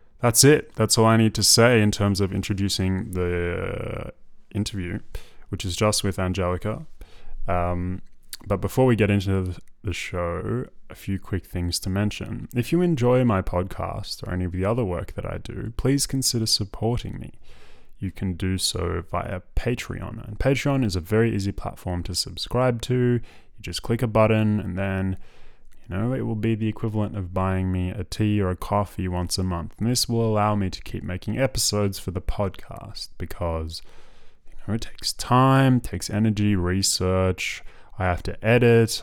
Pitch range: 90-115 Hz